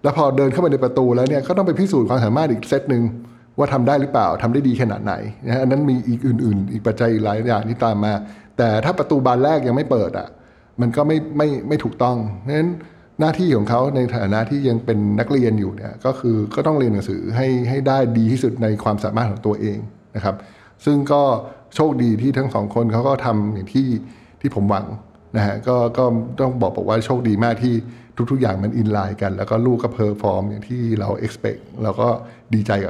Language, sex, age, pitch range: Thai, male, 60-79, 105-130 Hz